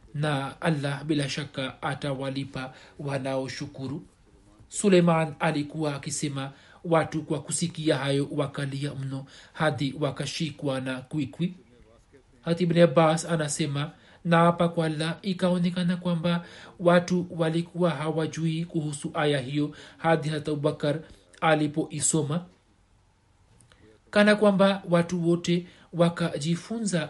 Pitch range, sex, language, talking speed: 140-170 Hz, male, Swahili, 100 wpm